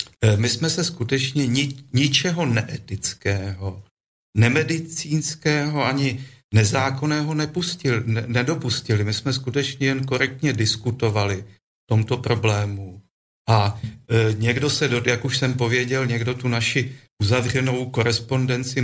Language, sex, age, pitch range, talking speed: Slovak, male, 40-59, 105-135 Hz, 105 wpm